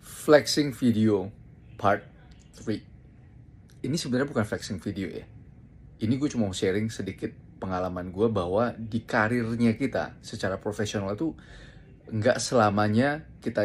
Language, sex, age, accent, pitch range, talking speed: Indonesian, male, 20-39, native, 100-125 Hz, 125 wpm